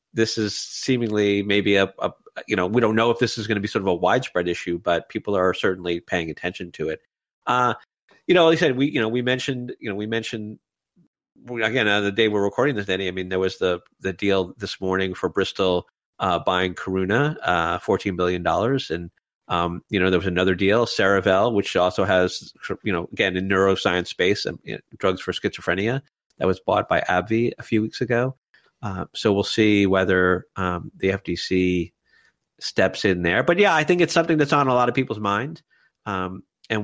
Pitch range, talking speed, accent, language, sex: 95-125 Hz, 210 wpm, American, English, male